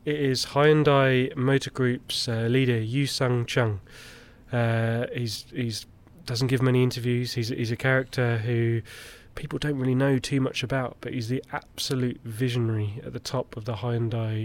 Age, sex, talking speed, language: 20-39, male, 160 wpm, English